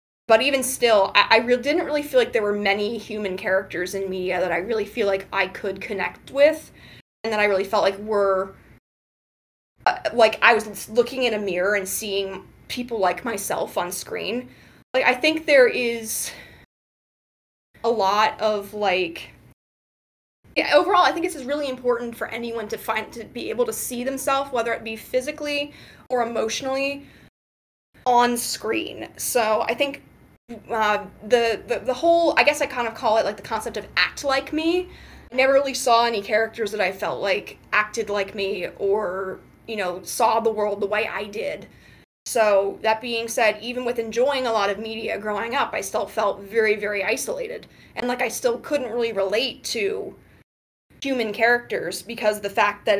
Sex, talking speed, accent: female, 185 wpm, American